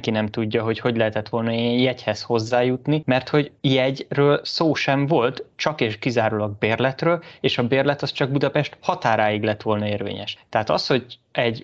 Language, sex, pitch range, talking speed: Hungarian, male, 110-130 Hz, 170 wpm